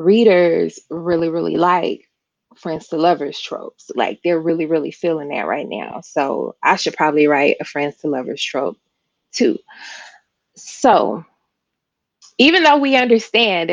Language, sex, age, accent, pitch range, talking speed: English, female, 20-39, American, 165-215 Hz, 140 wpm